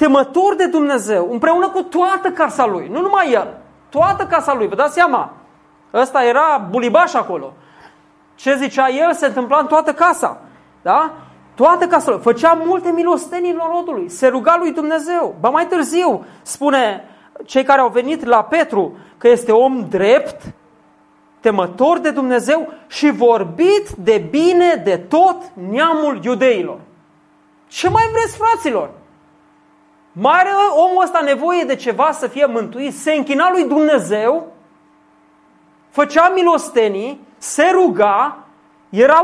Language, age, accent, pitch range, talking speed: Romanian, 40-59, native, 260-335 Hz, 135 wpm